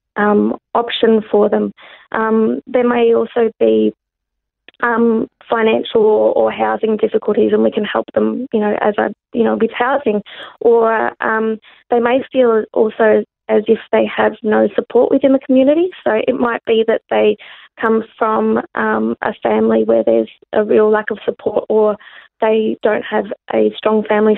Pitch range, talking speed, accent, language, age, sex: 210-235 Hz, 165 wpm, Australian, English, 20-39, female